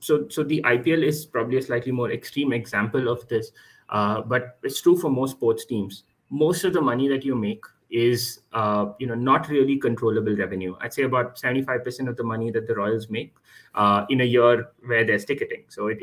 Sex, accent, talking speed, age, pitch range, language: male, Indian, 210 wpm, 30-49, 105-130 Hz, English